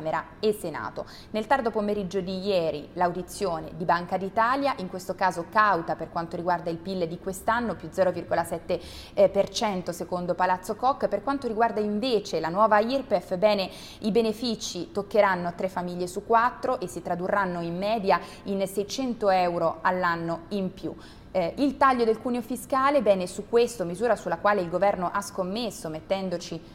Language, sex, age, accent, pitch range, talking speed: Italian, female, 20-39, native, 180-215 Hz, 155 wpm